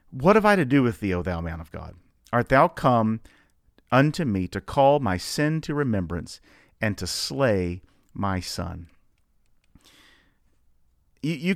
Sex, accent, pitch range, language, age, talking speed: male, American, 90-145 Hz, English, 50-69, 155 wpm